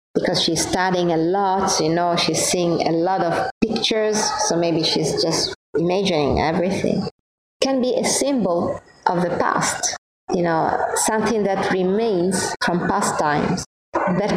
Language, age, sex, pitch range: Thai, 30-49, female, 190-230 Hz